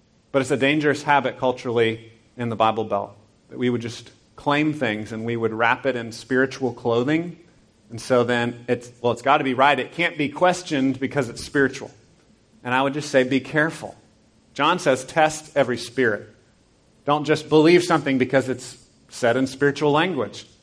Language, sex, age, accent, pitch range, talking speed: English, male, 30-49, American, 125-165 Hz, 185 wpm